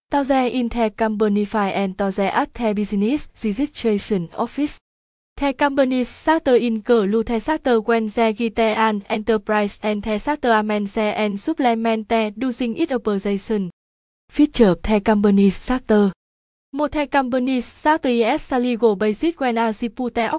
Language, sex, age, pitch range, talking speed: Vietnamese, female, 20-39, 210-250 Hz, 55 wpm